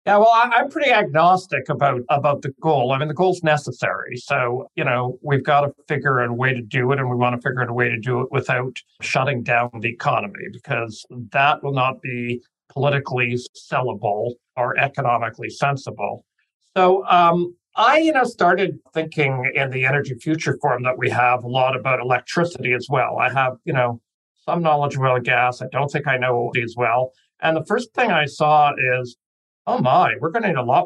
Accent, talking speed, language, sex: American, 210 wpm, English, male